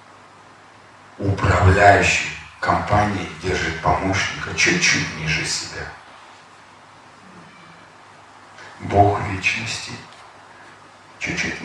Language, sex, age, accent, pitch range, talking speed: Russian, male, 40-59, native, 80-95 Hz, 50 wpm